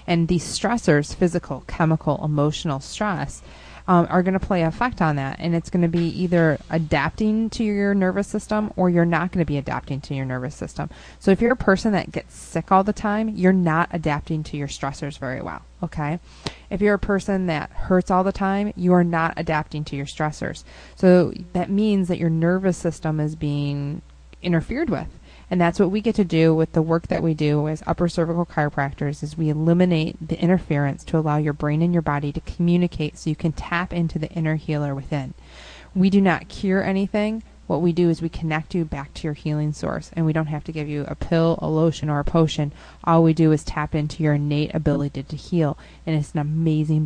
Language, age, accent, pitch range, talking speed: English, 20-39, American, 150-180 Hz, 215 wpm